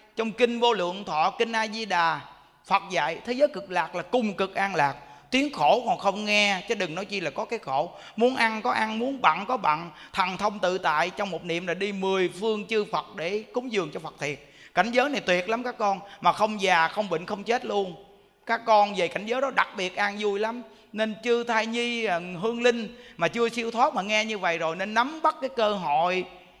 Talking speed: 240 wpm